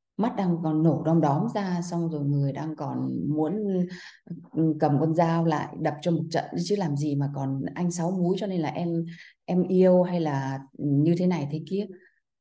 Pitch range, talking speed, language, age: 140-170 Hz, 205 wpm, Vietnamese, 20-39